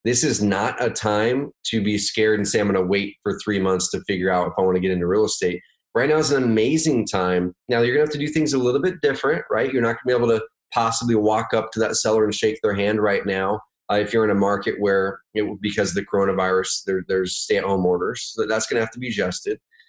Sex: male